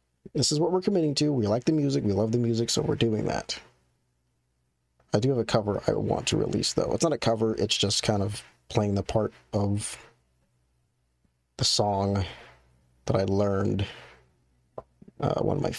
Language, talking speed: English, 185 wpm